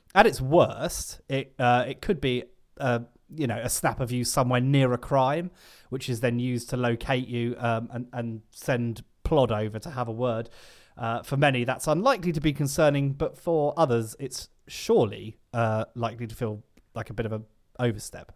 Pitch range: 115-140 Hz